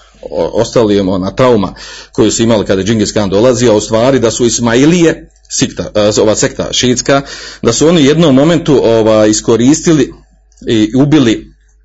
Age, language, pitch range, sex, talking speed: 40-59, Croatian, 105-130 Hz, male, 145 wpm